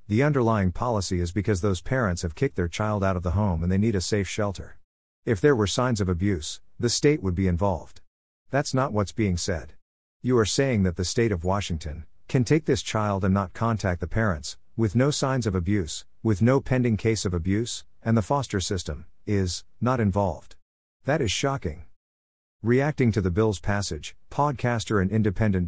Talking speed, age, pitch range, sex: 195 wpm, 50-69, 90-115 Hz, male